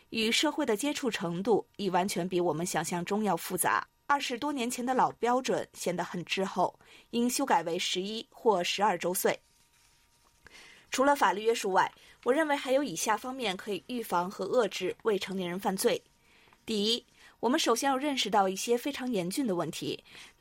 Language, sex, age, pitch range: Chinese, female, 20-39, 190-280 Hz